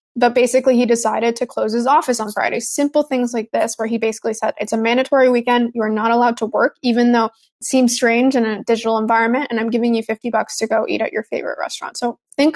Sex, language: female, English